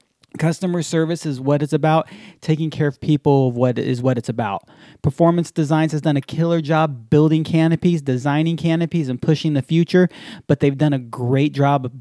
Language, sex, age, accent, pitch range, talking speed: English, male, 30-49, American, 135-165 Hz, 175 wpm